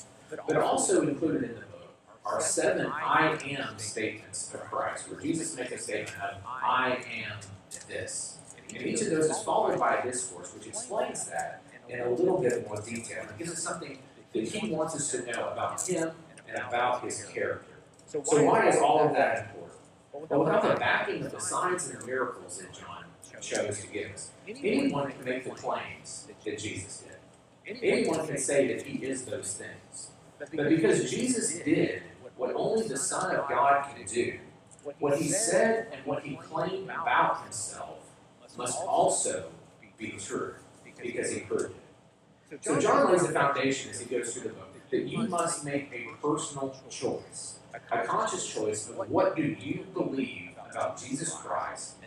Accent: American